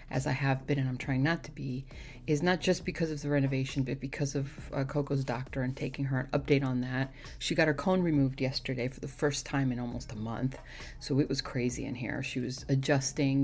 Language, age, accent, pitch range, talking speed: English, 40-59, American, 135-155 Hz, 235 wpm